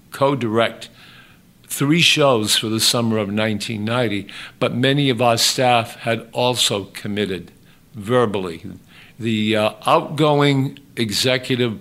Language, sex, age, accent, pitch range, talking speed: English, male, 50-69, American, 105-125 Hz, 105 wpm